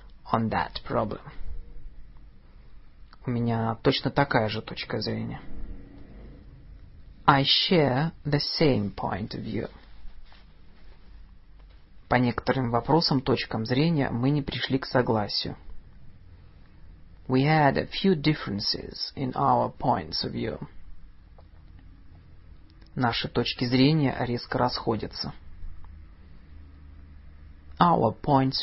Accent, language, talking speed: native, Russian, 90 wpm